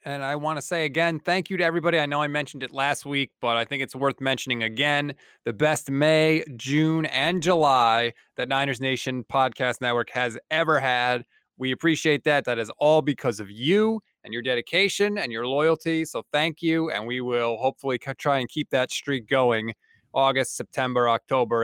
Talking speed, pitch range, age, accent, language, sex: 190 wpm, 130-195 Hz, 20-39, American, English, male